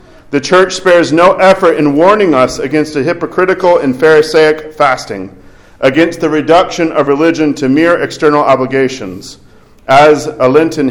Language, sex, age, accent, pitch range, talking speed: English, male, 40-59, American, 140-170 Hz, 145 wpm